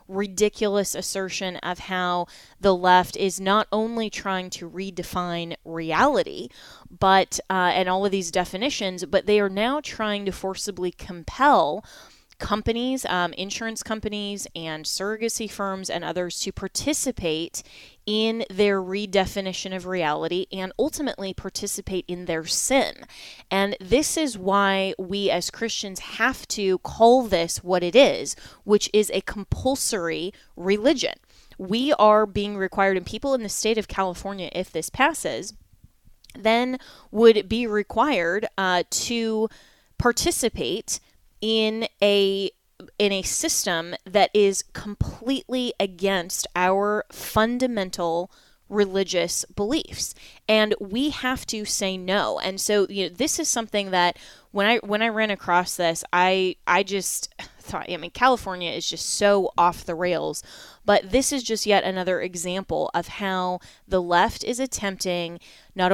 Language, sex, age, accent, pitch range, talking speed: English, female, 20-39, American, 180-220 Hz, 135 wpm